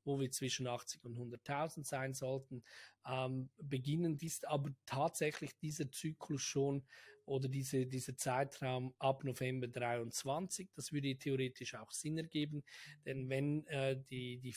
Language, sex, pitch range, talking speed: German, male, 130-150 Hz, 140 wpm